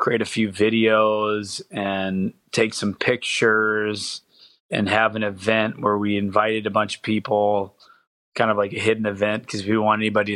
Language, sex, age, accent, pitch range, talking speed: English, male, 30-49, American, 100-110 Hz, 175 wpm